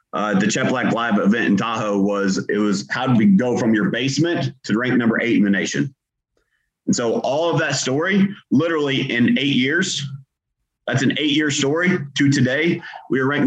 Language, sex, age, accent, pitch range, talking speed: English, male, 30-49, American, 115-155 Hz, 200 wpm